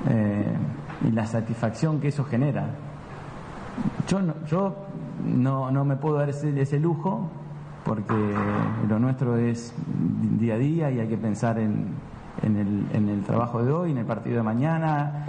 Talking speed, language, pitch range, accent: 165 wpm, Spanish, 115-150 Hz, Argentinian